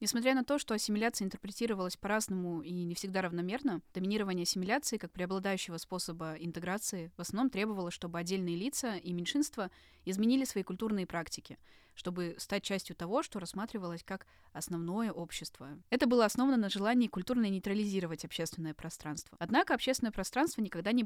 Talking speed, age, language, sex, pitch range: 150 wpm, 20-39, Russian, female, 175-235 Hz